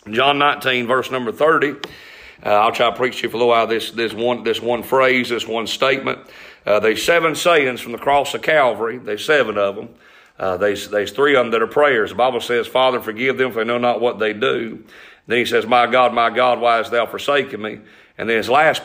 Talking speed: 240 wpm